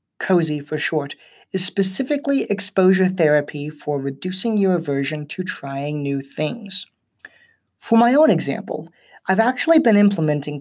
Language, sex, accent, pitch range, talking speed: English, male, American, 145-195 Hz, 130 wpm